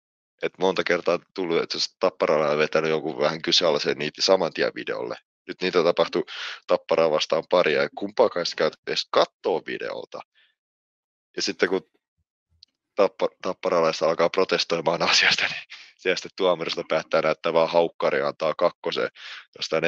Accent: native